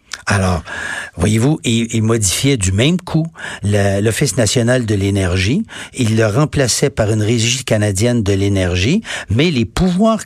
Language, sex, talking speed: French, male, 145 wpm